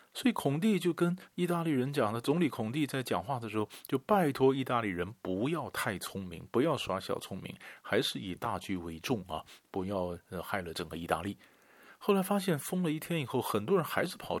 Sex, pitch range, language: male, 95-150 Hz, Chinese